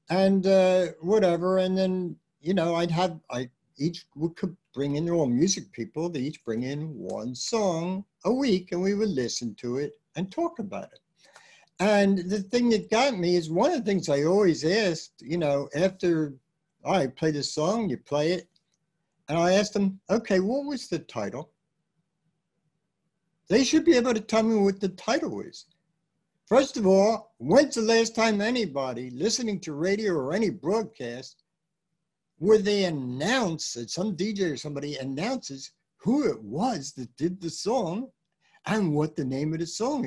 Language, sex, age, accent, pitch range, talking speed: English, male, 60-79, American, 150-200 Hz, 175 wpm